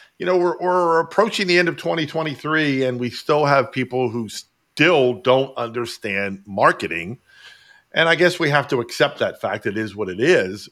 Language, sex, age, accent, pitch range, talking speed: English, male, 40-59, American, 120-170 Hz, 185 wpm